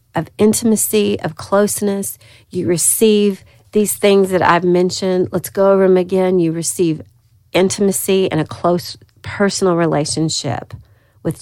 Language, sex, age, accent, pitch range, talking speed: English, female, 40-59, American, 130-205 Hz, 130 wpm